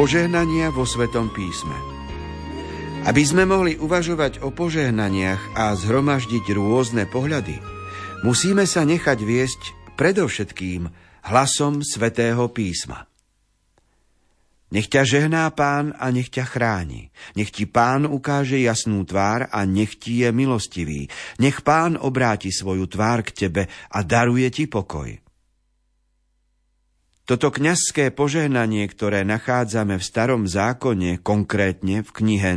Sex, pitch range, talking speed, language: male, 95-130 Hz, 115 wpm, Slovak